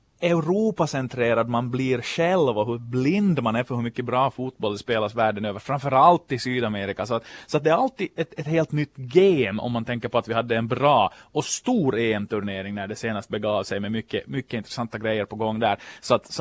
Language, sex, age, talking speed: Swedish, male, 30-49, 220 wpm